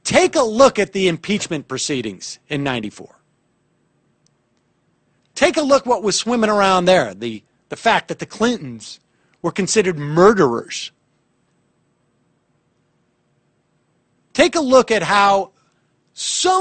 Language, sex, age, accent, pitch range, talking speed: English, male, 40-59, American, 155-245 Hz, 120 wpm